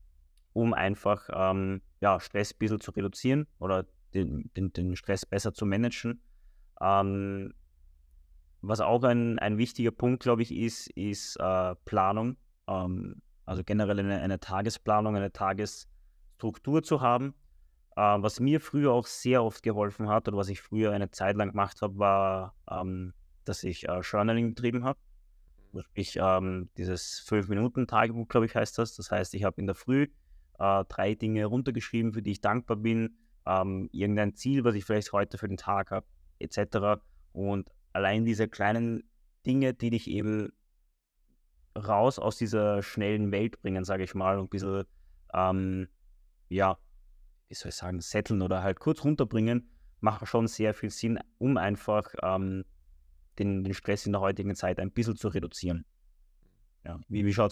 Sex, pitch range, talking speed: male, 95-110 Hz, 160 wpm